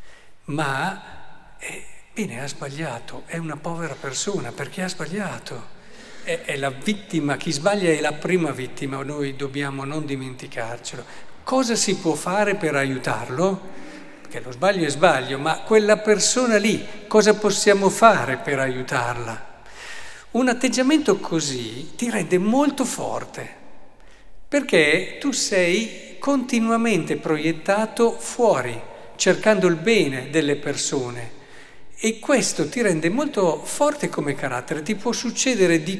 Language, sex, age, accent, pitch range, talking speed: Italian, male, 50-69, native, 140-215 Hz, 125 wpm